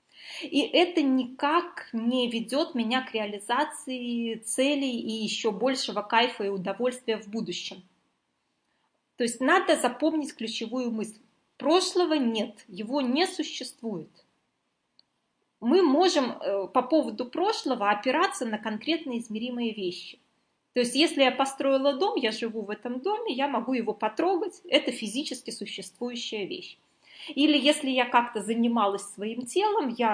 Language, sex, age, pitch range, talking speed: Russian, female, 20-39, 215-290 Hz, 130 wpm